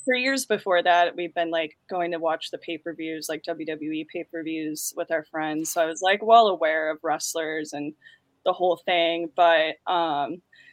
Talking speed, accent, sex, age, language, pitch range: 200 wpm, American, female, 20-39, English, 165-205 Hz